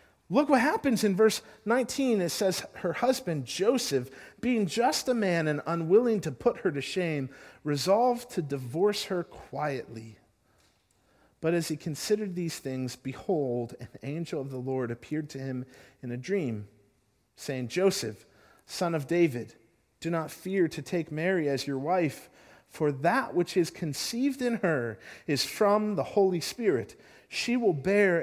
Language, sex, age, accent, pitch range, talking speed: English, male, 40-59, American, 135-205 Hz, 155 wpm